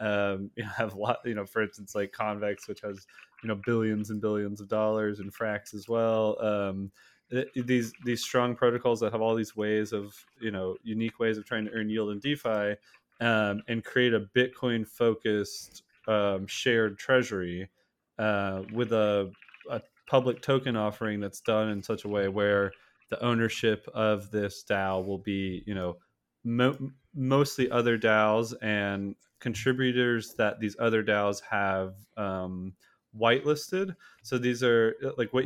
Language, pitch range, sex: English, 105-120 Hz, male